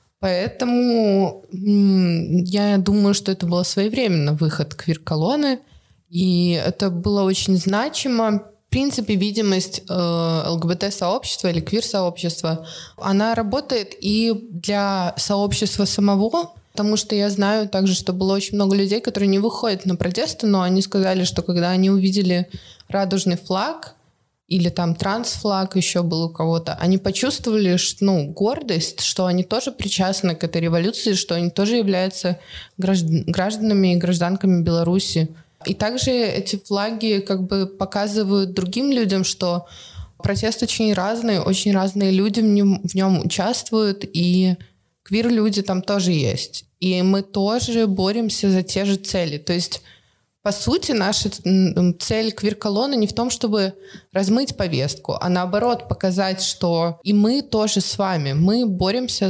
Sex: female